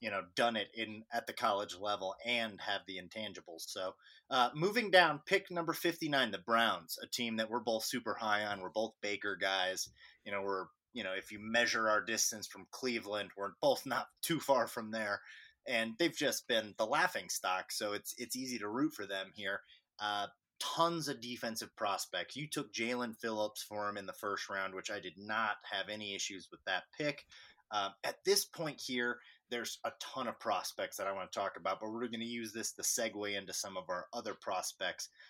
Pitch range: 100-120 Hz